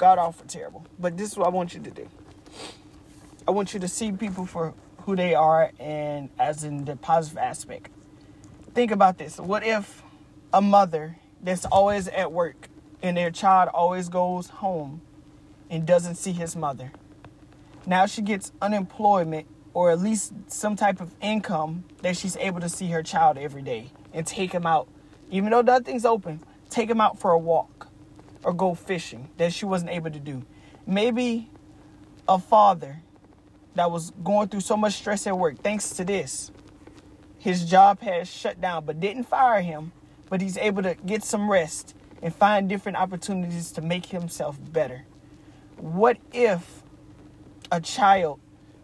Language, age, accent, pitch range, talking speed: English, 20-39, American, 155-195 Hz, 165 wpm